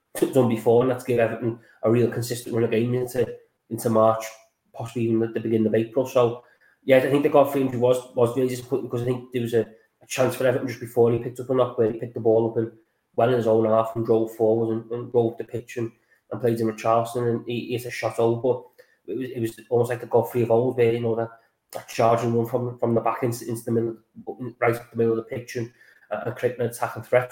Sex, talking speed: male, 270 wpm